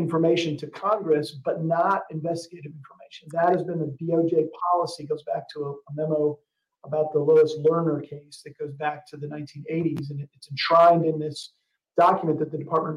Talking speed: 175 wpm